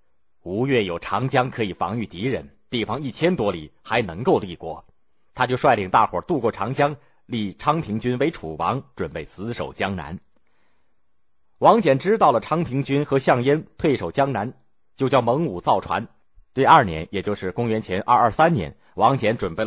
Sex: male